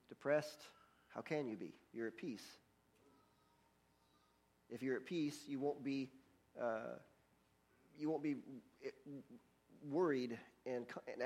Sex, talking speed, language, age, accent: male, 110 wpm, English, 40-59, American